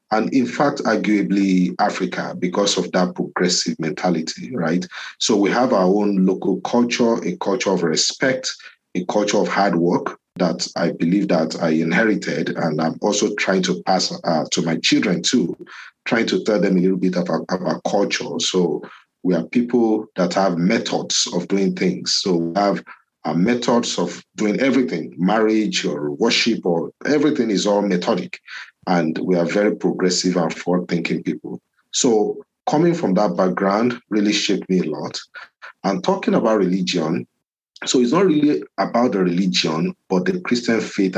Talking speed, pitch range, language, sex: 160 wpm, 85-105 Hz, English, male